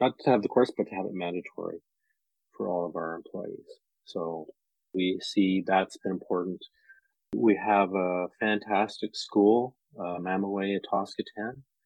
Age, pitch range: 30-49, 90-105 Hz